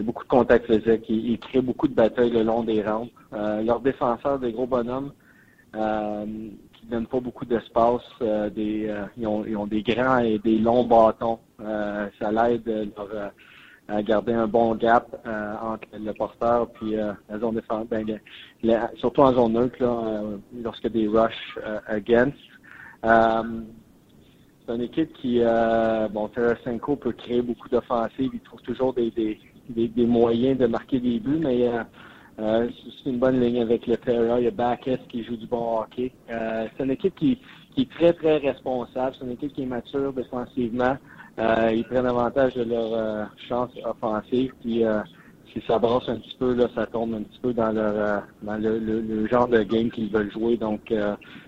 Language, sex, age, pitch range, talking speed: French, male, 30-49, 110-125 Hz, 195 wpm